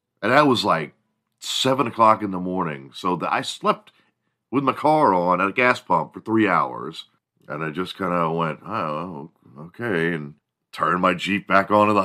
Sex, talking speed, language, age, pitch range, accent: male, 190 wpm, English, 40-59, 85-110 Hz, American